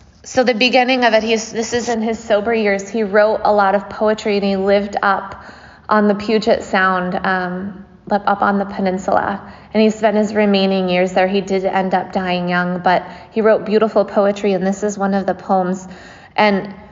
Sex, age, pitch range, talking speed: female, 20-39, 195-225 Hz, 200 wpm